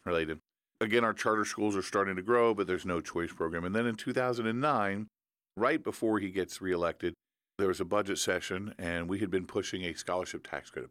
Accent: American